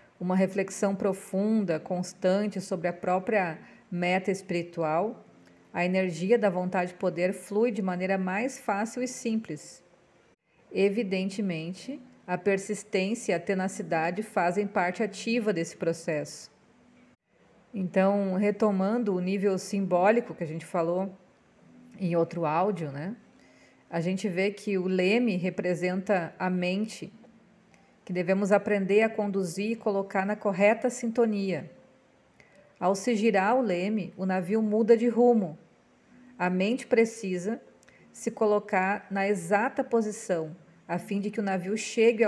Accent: Brazilian